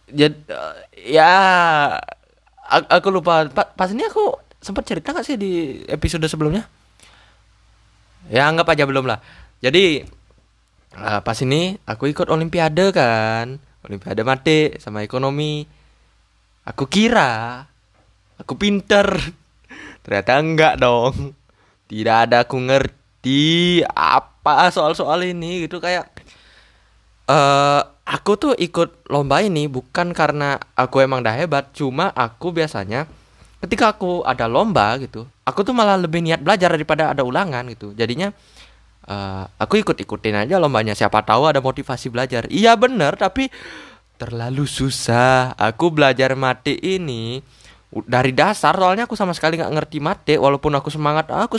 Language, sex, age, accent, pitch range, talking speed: Indonesian, male, 20-39, native, 115-175 Hz, 125 wpm